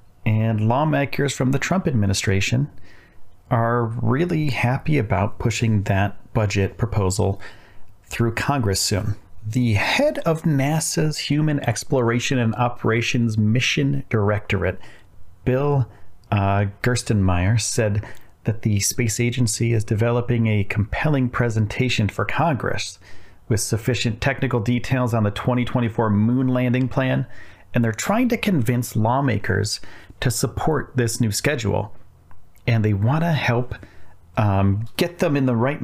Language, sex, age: English, male, 40-59